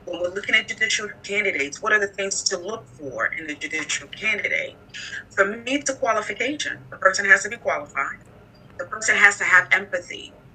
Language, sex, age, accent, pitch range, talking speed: English, female, 30-49, American, 170-200 Hz, 195 wpm